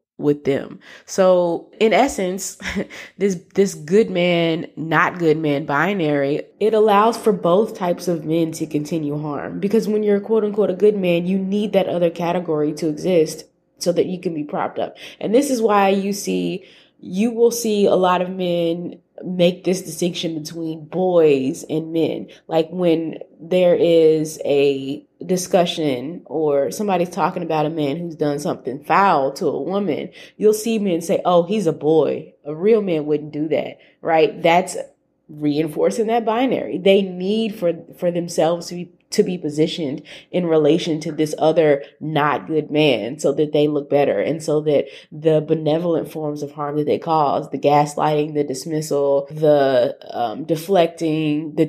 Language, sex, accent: English, female, American